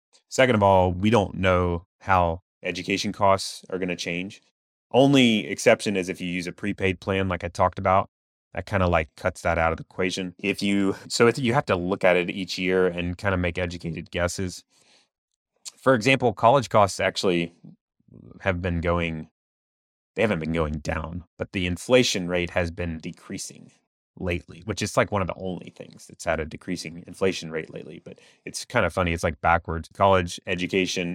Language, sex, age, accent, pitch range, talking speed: English, male, 30-49, American, 85-95 Hz, 195 wpm